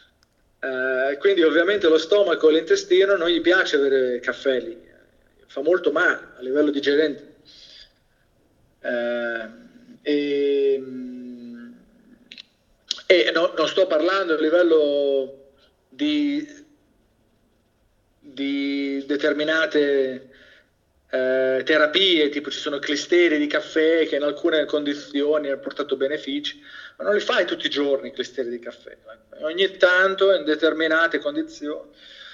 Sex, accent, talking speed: male, native, 115 wpm